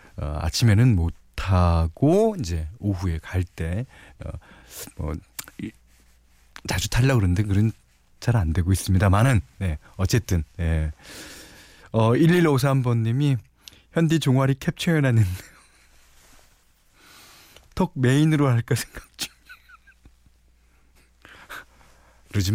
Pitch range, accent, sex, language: 85-135 Hz, native, male, Korean